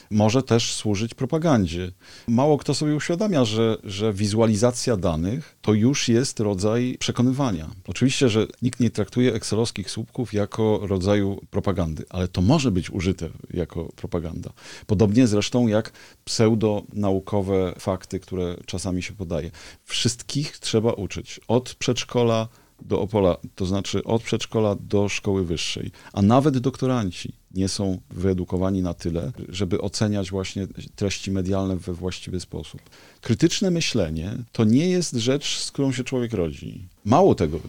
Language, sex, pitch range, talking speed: Polish, male, 95-125 Hz, 135 wpm